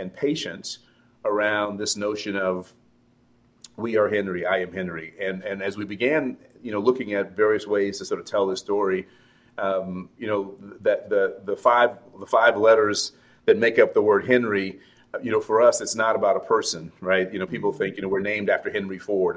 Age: 40-59